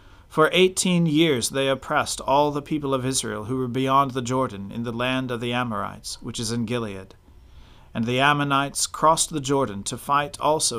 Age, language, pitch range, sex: 40-59, English, 115-150 Hz, male